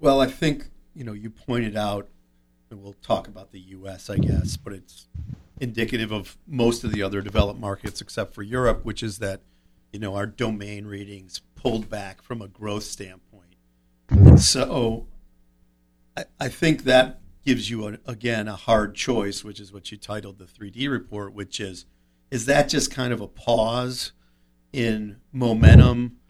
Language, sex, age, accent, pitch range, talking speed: English, male, 50-69, American, 95-120 Hz, 170 wpm